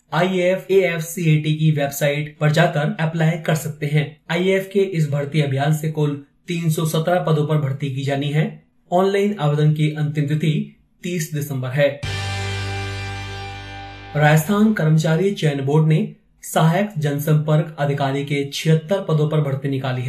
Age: 30-49